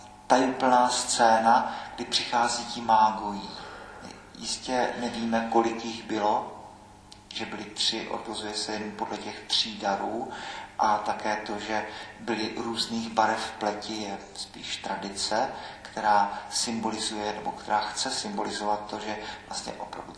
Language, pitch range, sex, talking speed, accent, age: Czech, 105-115 Hz, male, 125 wpm, native, 40-59